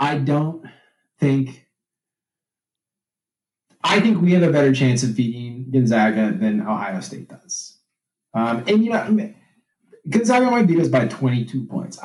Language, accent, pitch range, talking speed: English, American, 125-175 Hz, 140 wpm